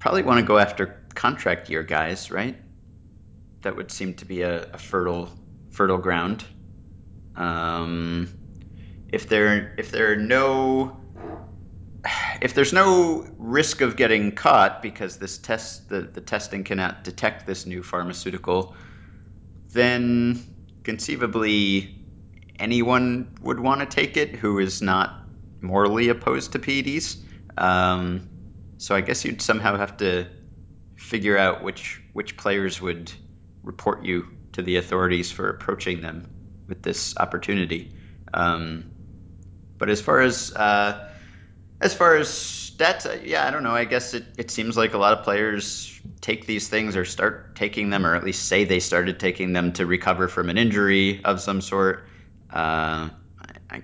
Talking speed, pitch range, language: 145 wpm, 90-105 Hz, English